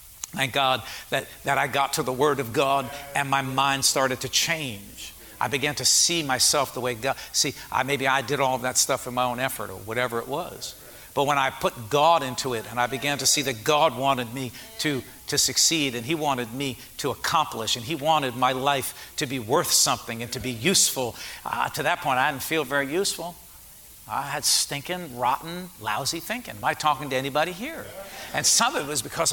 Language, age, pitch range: English, 60-79, 130-165 Hz